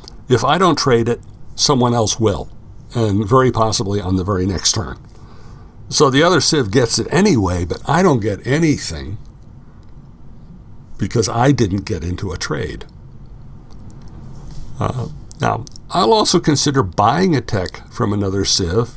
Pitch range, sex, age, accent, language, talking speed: 100-120 Hz, male, 60-79, American, English, 145 wpm